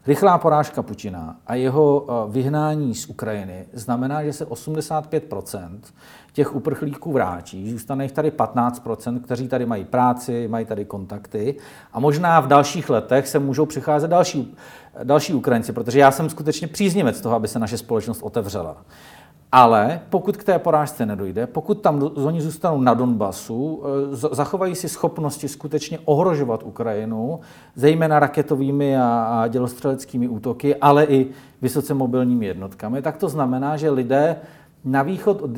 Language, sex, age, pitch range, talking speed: Czech, male, 40-59, 125-160 Hz, 140 wpm